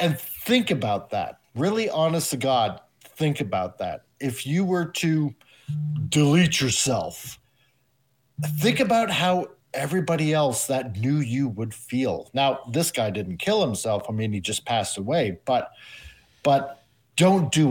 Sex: male